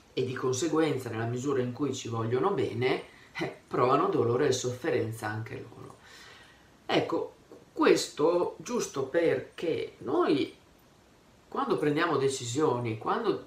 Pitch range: 120-155 Hz